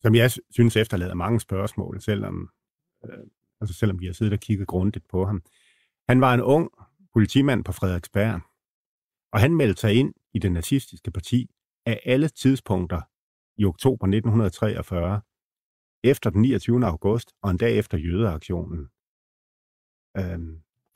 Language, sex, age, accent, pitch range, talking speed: Danish, male, 40-59, native, 90-115 Hz, 140 wpm